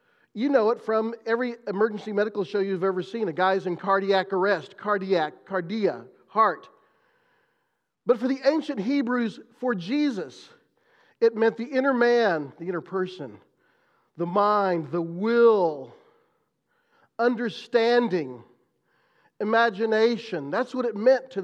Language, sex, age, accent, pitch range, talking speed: English, male, 40-59, American, 185-255 Hz, 125 wpm